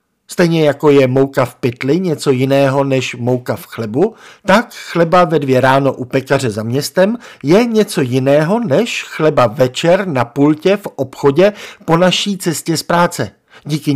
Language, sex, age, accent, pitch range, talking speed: Czech, male, 50-69, native, 130-180 Hz, 160 wpm